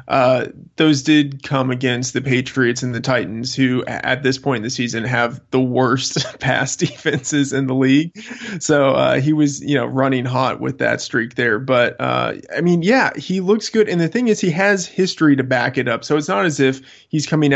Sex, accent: male, American